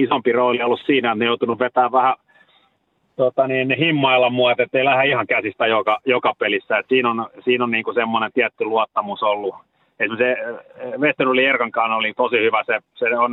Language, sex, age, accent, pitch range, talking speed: Finnish, male, 30-49, native, 120-155 Hz, 185 wpm